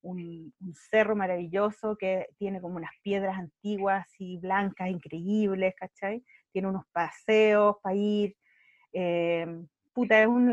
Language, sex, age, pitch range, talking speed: Spanish, female, 30-49, 190-260 Hz, 130 wpm